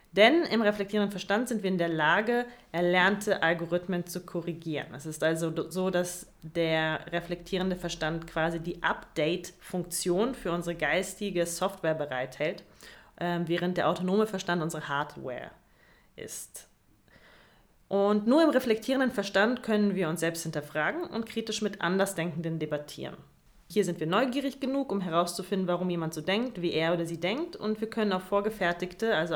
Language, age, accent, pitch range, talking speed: German, 30-49, German, 165-210 Hz, 150 wpm